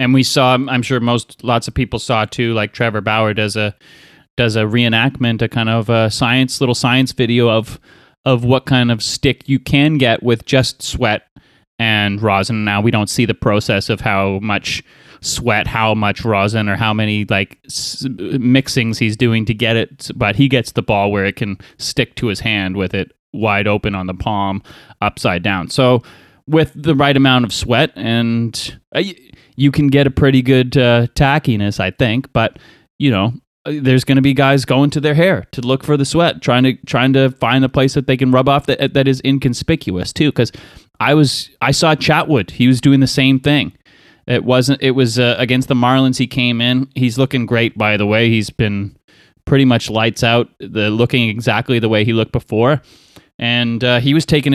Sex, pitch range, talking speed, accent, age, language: male, 110-135 Hz, 205 wpm, American, 30-49, English